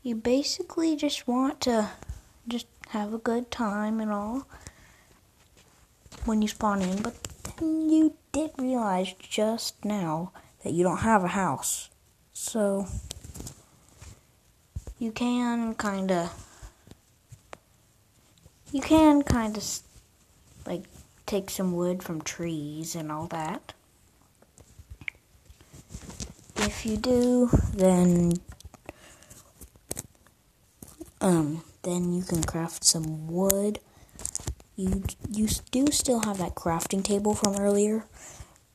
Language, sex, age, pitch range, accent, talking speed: English, female, 20-39, 175-225 Hz, American, 105 wpm